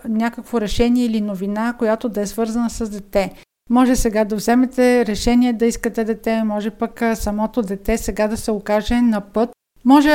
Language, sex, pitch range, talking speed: Bulgarian, female, 220-245 Hz, 170 wpm